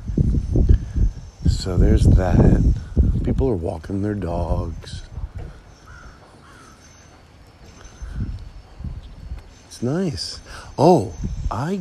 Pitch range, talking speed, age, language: 90-130 Hz, 60 wpm, 50-69, English